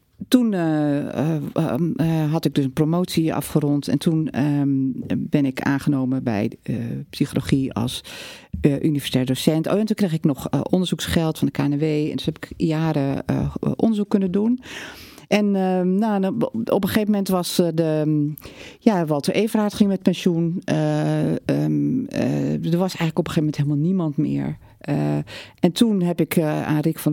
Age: 40-59